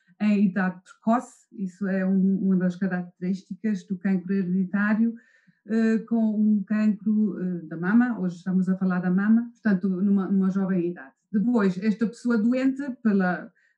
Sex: female